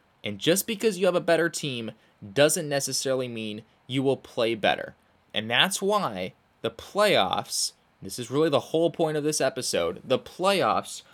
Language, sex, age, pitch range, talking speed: English, male, 20-39, 115-165 Hz, 165 wpm